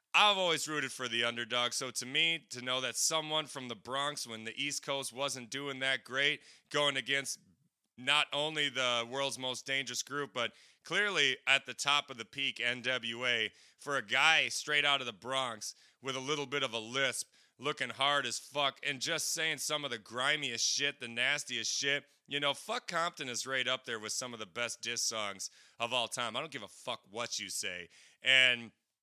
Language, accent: English, American